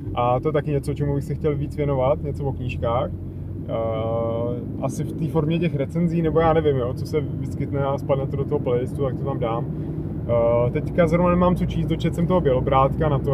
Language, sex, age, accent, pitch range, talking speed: Czech, male, 20-39, native, 135-160 Hz, 225 wpm